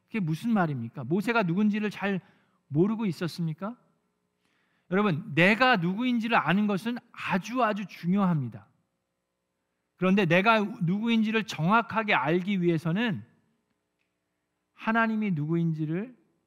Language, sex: Korean, male